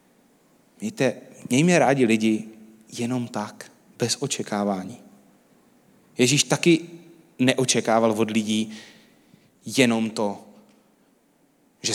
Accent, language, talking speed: native, Czech, 80 wpm